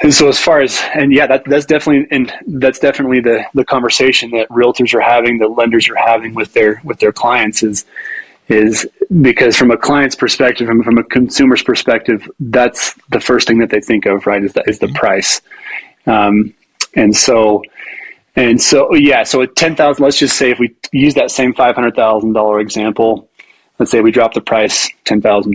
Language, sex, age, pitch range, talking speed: English, male, 20-39, 110-130 Hz, 200 wpm